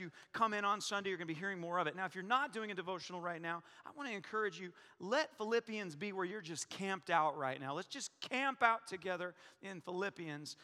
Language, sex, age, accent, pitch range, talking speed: English, male, 40-59, American, 180-235 Hz, 250 wpm